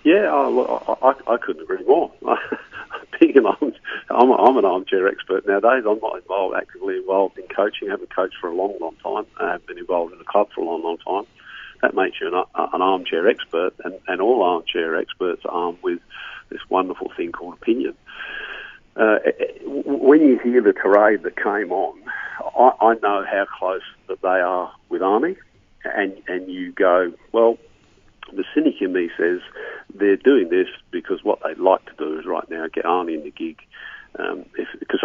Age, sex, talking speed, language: 50-69, male, 190 wpm, English